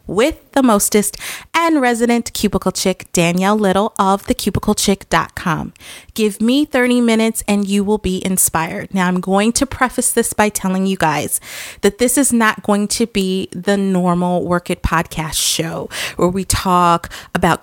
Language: English